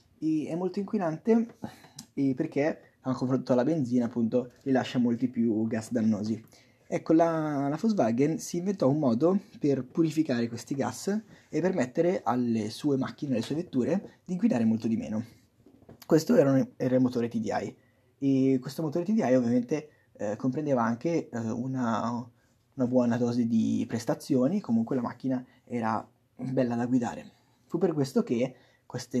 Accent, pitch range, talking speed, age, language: native, 120-195 Hz, 155 wpm, 20-39, Italian